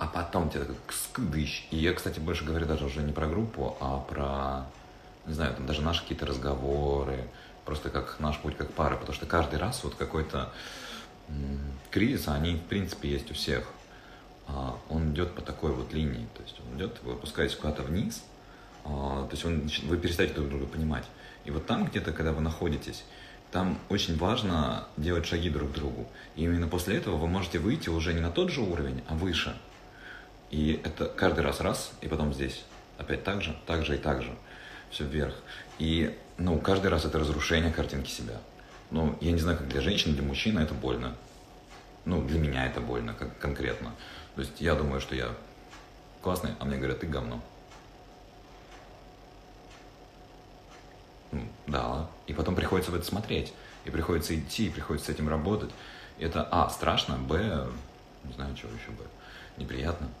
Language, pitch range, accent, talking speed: Russian, 70-85 Hz, native, 175 wpm